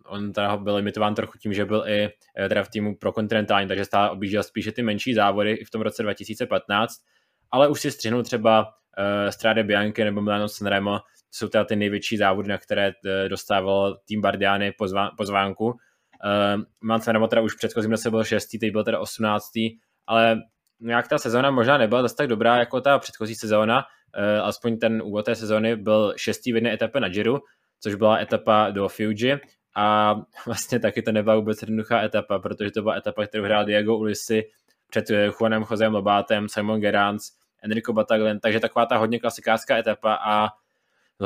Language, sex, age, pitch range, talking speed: Czech, male, 20-39, 105-115 Hz, 180 wpm